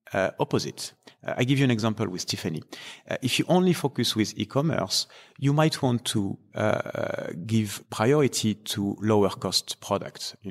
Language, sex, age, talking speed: English, male, 30-49, 170 wpm